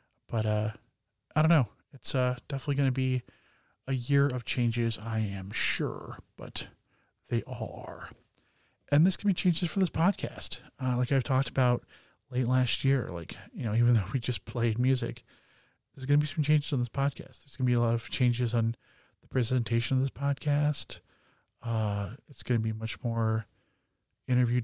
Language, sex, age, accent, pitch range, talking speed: English, male, 40-59, American, 115-140 Hz, 180 wpm